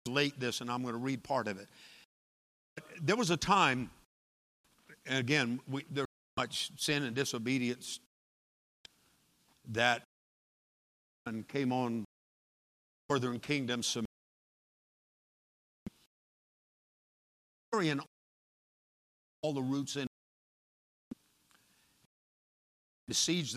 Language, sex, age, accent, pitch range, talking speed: English, male, 50-69, American, 105-140 Hz, 95 wpm